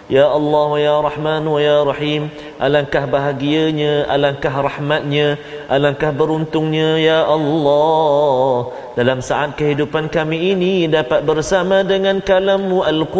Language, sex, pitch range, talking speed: Malayalam, male, 120-150 Hz, 90 wpm